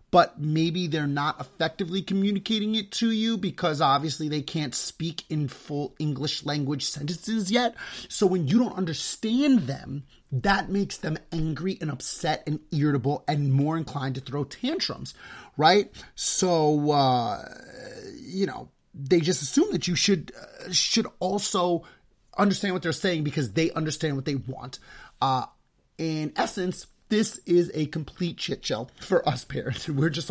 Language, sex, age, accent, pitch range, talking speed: English, male, 30-49, American, 145-185 Hz, 150 wpm